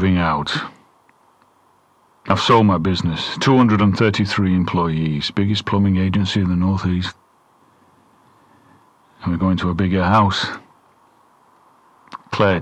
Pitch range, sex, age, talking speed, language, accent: 90-110 Hz, male, 40-59, 100 wpm, English, British